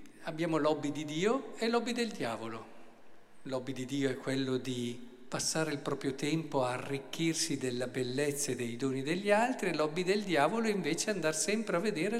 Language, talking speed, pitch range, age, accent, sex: Italian, 180 wpm, 135-195 Hz, 50-69, native, male